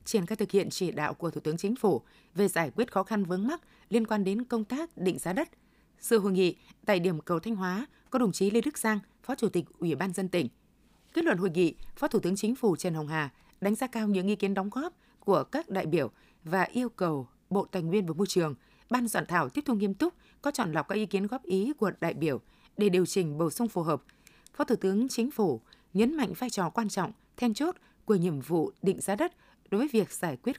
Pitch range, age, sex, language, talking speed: 185-240 Hz, 20-39, female, Vietnamese, 255 wpm